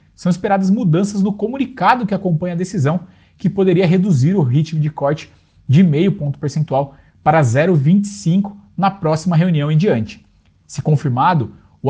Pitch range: 135-180 Hz